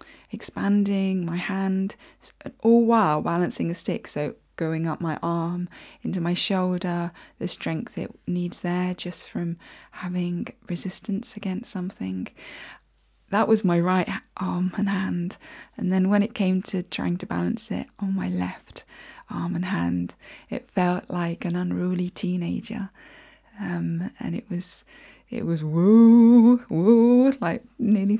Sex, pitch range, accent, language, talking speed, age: female, 180-220 Hz, British, English, 140 wpm, 20-39